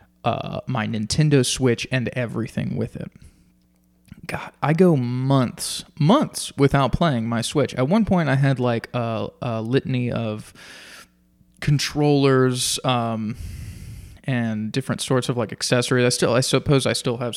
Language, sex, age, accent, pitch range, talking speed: English, male, 20-39, American, 110-135 Hz, 145 wpm